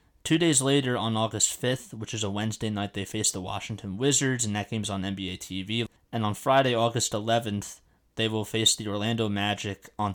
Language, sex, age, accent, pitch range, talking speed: English, male, 20-39, American, 100-115 Hz, 200 wpm